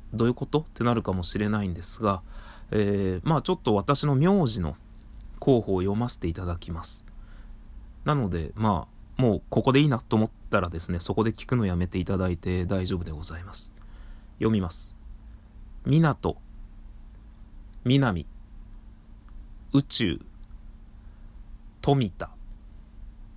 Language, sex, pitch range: Japanese, male, 95-110 Hz